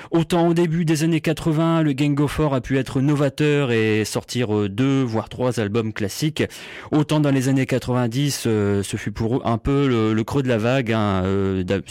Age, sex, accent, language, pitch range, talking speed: 30-49, male, French, English, 115-150 Hz, 195 wpm